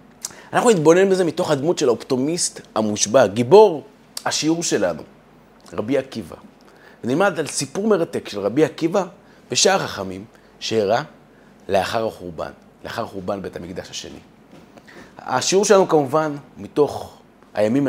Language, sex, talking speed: Hebrew, male, 115 wpm